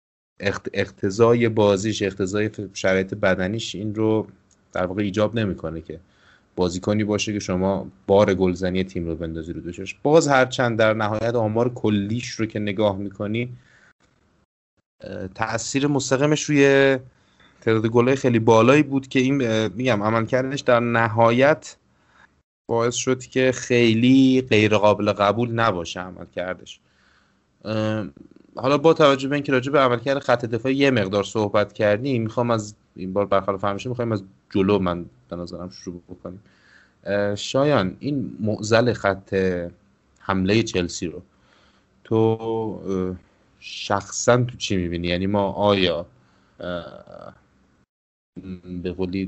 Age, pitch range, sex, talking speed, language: 30-49, 95-120 Hz, male, 120 wpm, Persian